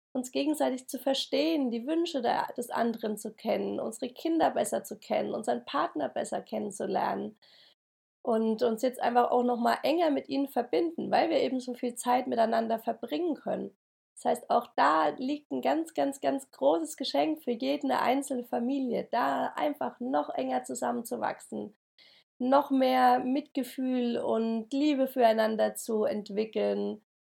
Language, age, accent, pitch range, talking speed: German, 30-49, German, 225-270 Hz, 145 wpm